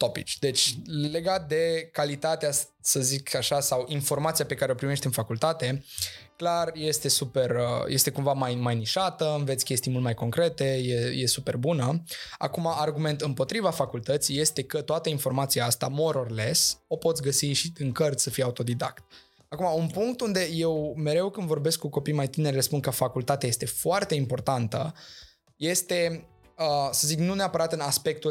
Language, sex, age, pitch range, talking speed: Romanian, male, 20-39, 125-155 Hz, 165 wpm